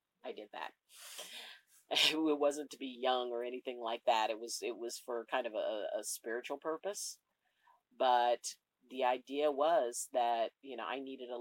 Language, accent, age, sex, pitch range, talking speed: English, American, 40-59, female, 125-160 Hz, 175 wpm